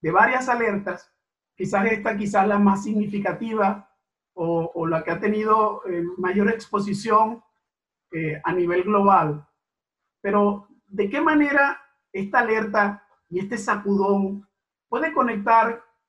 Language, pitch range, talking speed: Spanish, 190-225 Hz, 125 wpm